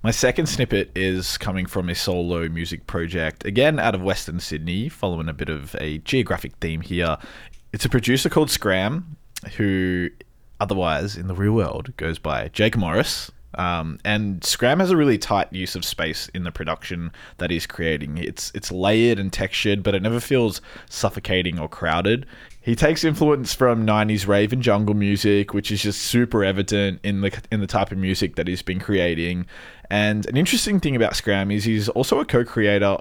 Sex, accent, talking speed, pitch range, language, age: male, Australian, 185 wpm, 90-110 Hz, English, 20-39